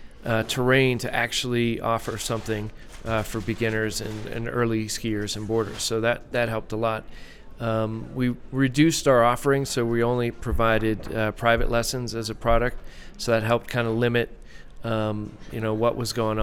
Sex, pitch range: male, 110-125 Hz